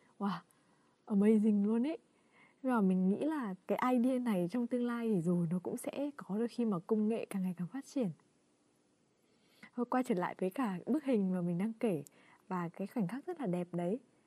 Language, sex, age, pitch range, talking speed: Vietnamese, female, 20-39, 185-250 Hz, 210 wpm